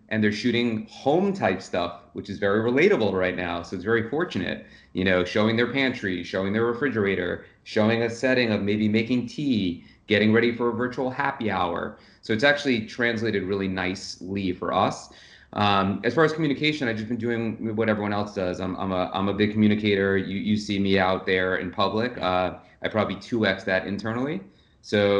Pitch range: 95-115 Hz